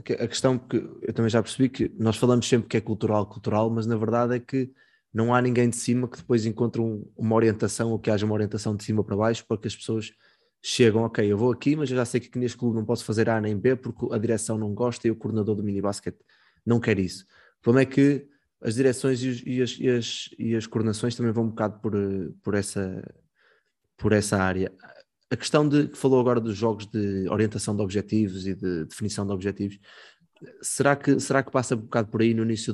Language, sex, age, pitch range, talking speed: Portuguese, male, 20-39, 105-115 Hz, 235 wpm